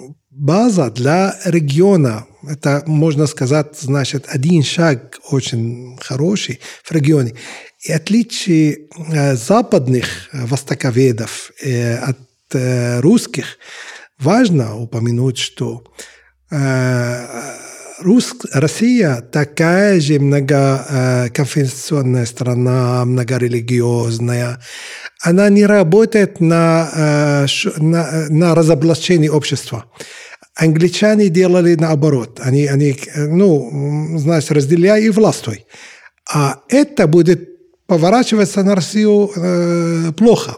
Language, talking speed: Russian, 90 wpm